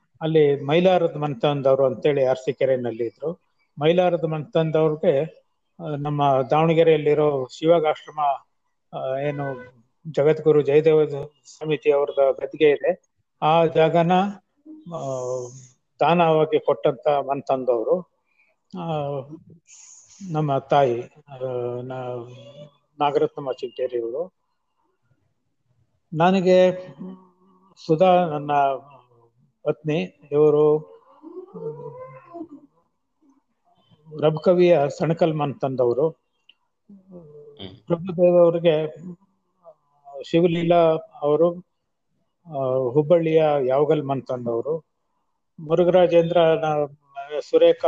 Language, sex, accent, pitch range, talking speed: Kannada, male, native, 140-175 Hz, 55 wpm